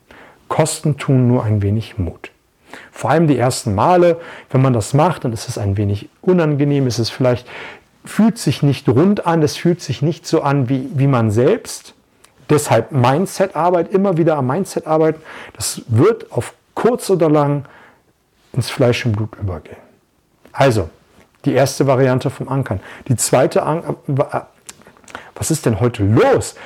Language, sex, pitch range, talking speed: German, male, 125-160 Hz, 160 wpm